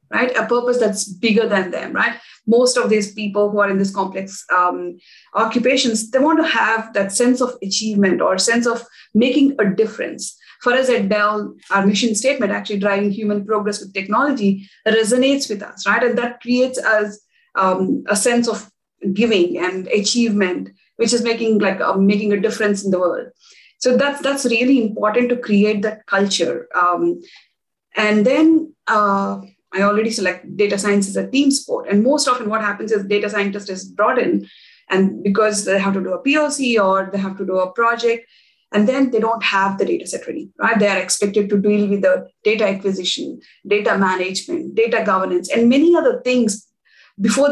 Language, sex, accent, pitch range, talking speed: English, female, Indian, 195-245 Hz, 185 wpm